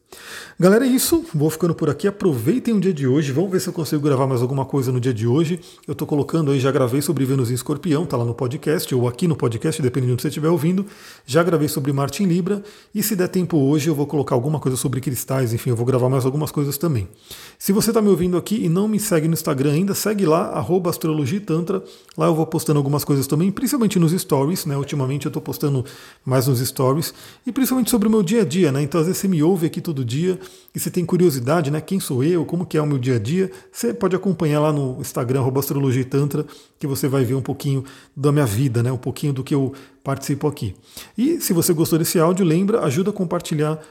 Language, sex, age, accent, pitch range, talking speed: Portuguese, male, 40-59, Brazilian, 140-180 Hz, 240 wpm